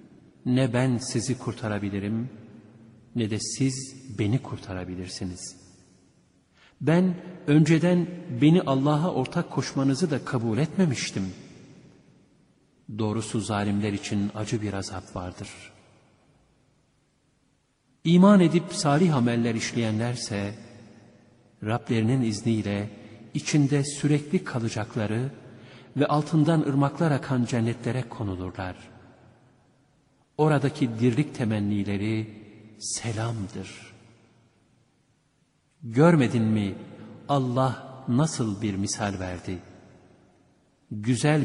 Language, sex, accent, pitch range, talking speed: Turkish, male, native, 105-140 Hz, 75 wpm